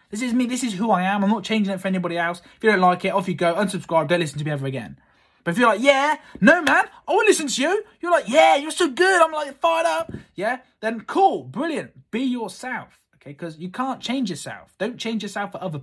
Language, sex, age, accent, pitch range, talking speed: English, male, 20-39, British, 135-210 Hz, 260 wpm